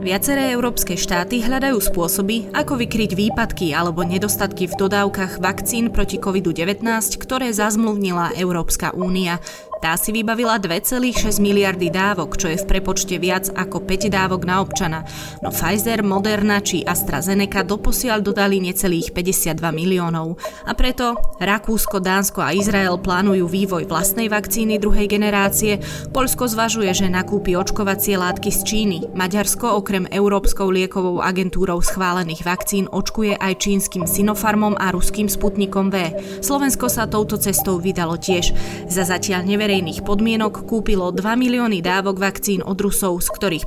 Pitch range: 185-210 Hz